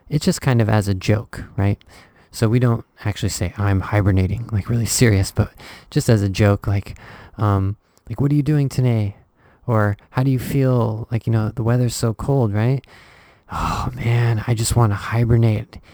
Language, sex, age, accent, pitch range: Japanese, male, 20-39, American, 100-115 Hz